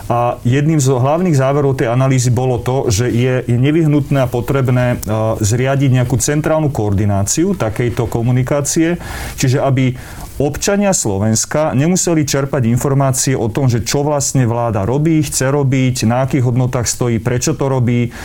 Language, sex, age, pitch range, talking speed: Slovak, male, 30-49, 115-140 Hz, 140 wpm